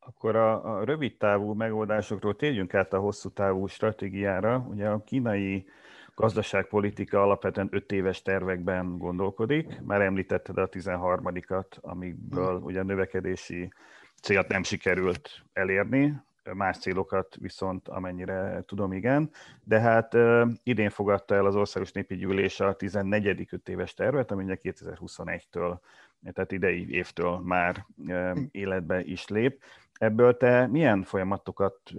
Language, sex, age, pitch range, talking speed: Hungarian, male, 30-49, 95-110 Hz, 120 wpm